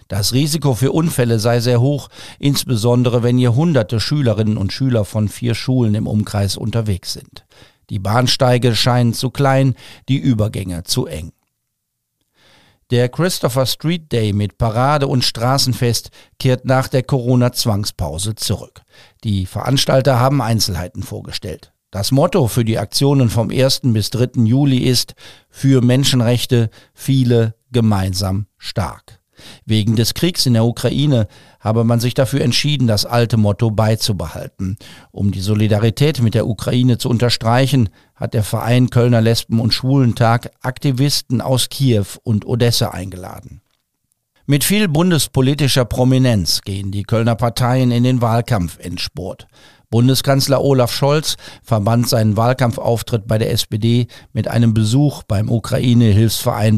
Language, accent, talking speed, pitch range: German, German, 135 wpm, 110-130 Hz